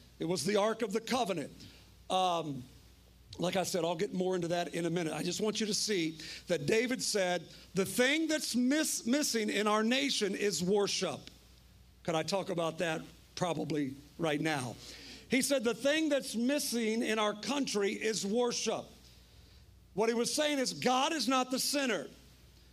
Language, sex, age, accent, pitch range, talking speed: English, male, 50-69, American, 200-270 Hz, 175 wpm